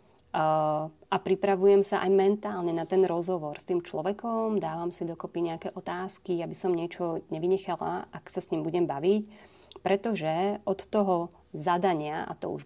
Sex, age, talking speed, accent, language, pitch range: female, 30-49, 155 wpm, native, Czech, 170-200 Hz